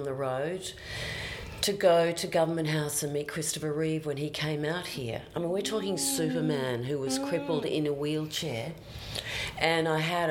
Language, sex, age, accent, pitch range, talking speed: English, female, 40-59, Australian, 135-155 Hz, 175 wpm